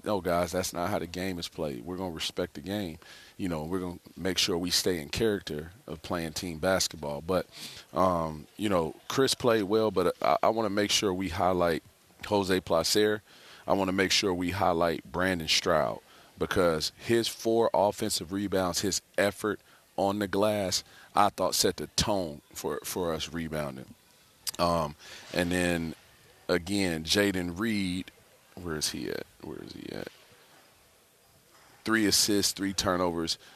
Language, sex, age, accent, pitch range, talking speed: English, male, 40-59, American, 85-95 Hz, 170 wpm